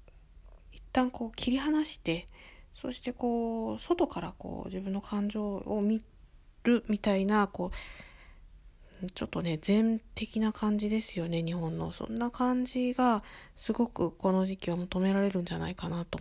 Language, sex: Japanese, female